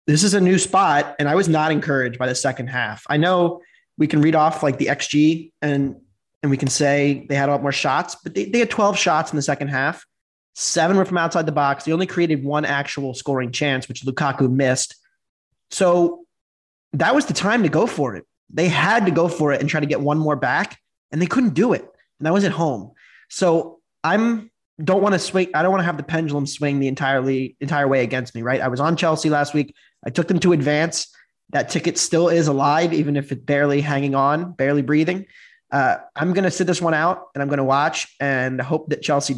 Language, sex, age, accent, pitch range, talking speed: English, male, 20-39, American, 140-175 Hz, 235 wpm